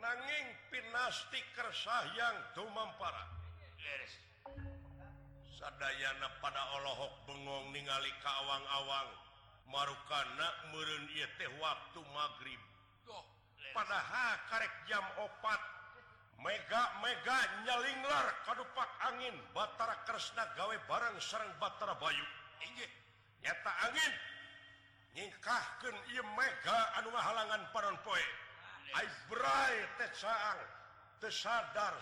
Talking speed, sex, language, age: 80 wpm, male, Indonesian, 50-69